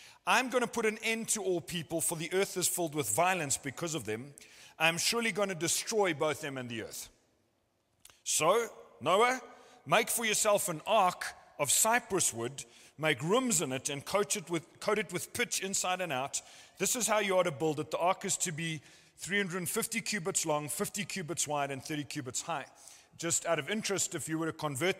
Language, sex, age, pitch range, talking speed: English, male, 40-59, 150-210 Hz, 195 wpm